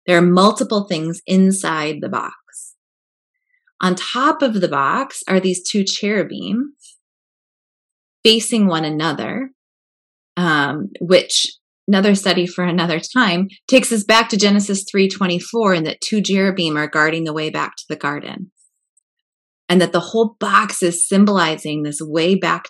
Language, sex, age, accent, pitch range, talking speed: English, female, 20-39, American, 165-205 Hz, 145 wpm